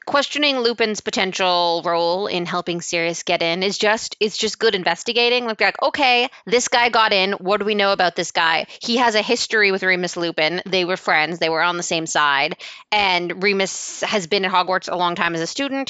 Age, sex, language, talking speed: 20-39, female, English, 220 wpm